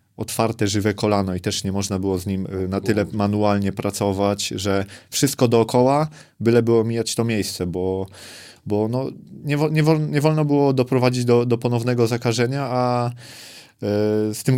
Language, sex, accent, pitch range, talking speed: Polish, male, native, 100-120 Hz, 150 wpm